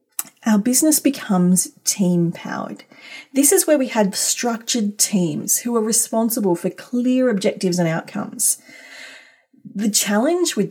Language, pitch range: English, 185-235 Hz